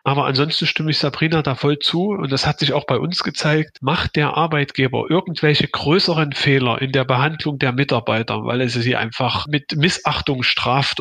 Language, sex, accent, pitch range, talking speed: German, male, German, 125-155 Hz, 185 wpm